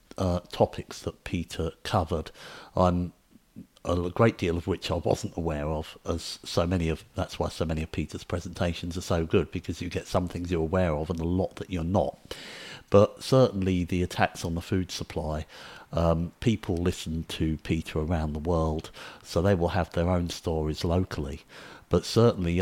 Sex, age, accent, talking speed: male, 50-69, British, 185 wpm